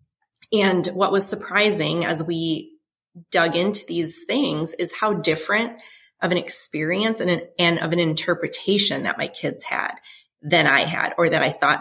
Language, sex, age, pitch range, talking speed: English, female, 30-49, 165-200 Hz, 170 wpm